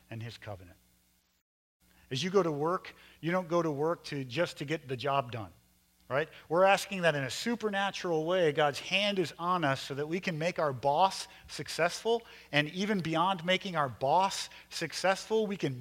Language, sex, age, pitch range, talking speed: English, male, 40-59, 135-190 Hz, 190 wpm